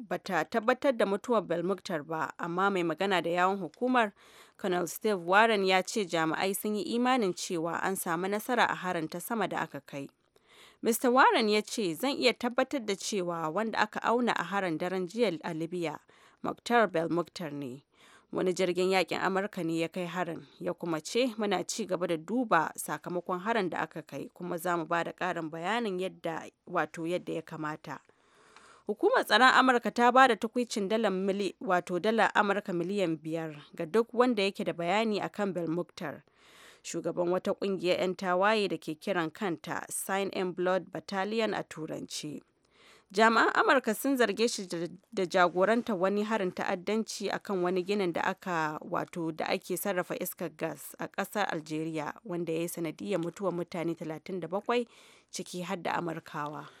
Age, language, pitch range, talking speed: 30-49, English, 170-210 Hz, 145 wpm